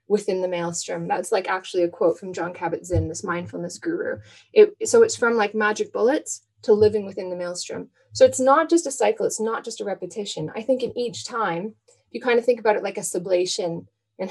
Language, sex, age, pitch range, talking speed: English, female, 20-39, 180-230 Hz, 215 wpm